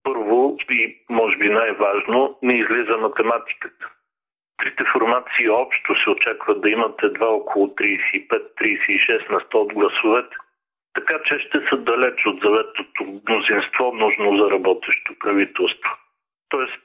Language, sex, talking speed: Bulgarian, male, 125 wpm